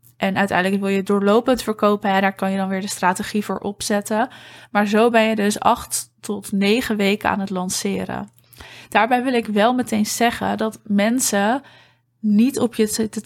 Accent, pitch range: Dutch, 195-220 Hz